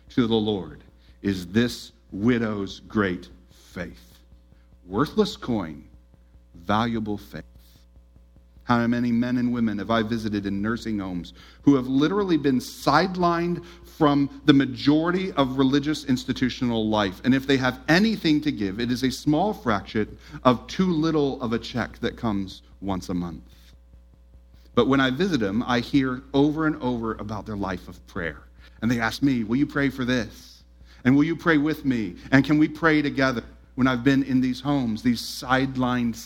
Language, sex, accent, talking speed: English, male, American, 165 wpm